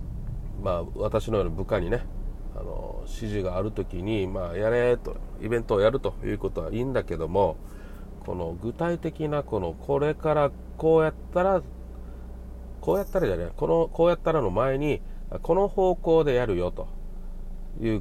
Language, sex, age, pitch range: Japanese, male, 40-59, 95-155 Hz